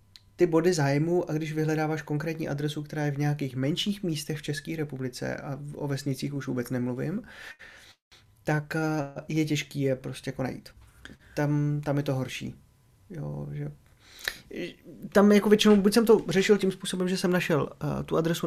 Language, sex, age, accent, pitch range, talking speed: Czech, male, 20-39, native, 130-155 Hz, 170 wpm